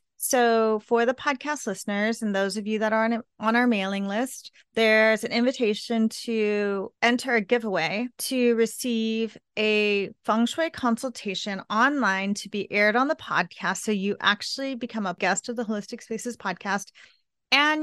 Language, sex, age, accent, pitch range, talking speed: English, female, 30-49, American, 195-235 Hz, 160 wpm